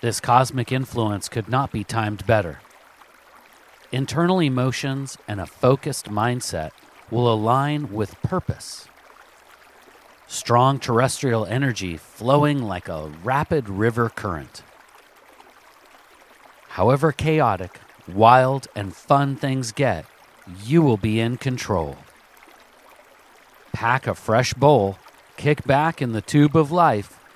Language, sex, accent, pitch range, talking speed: English, male, American, 105-140 Hz, 110 wpm